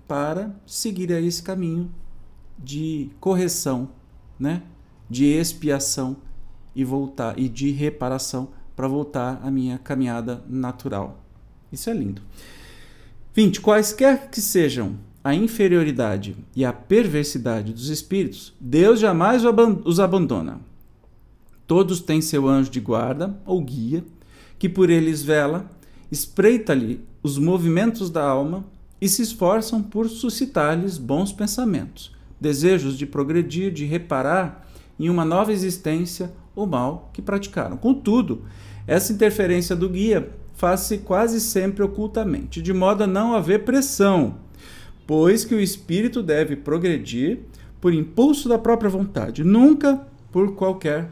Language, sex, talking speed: Portuguese, male, 120 wpm